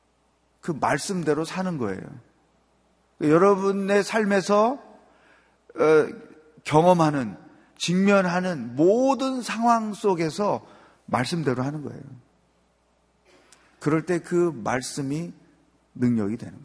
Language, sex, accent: Korean, male, native